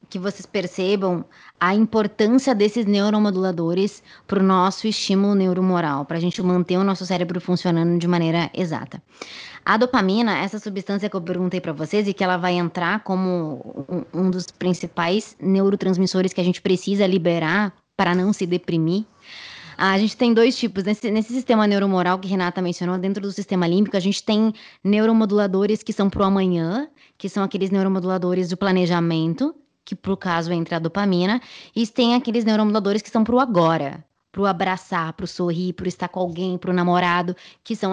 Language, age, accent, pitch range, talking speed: Portuguese, 20-39, Brazilian, 180-210 Hz, 170 wpm